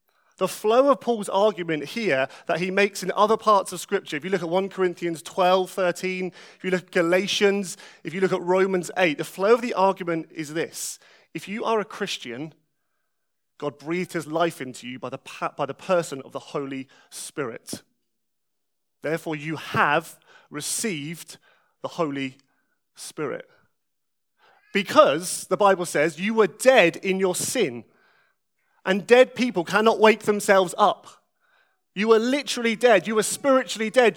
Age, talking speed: 30-49, 160 wpm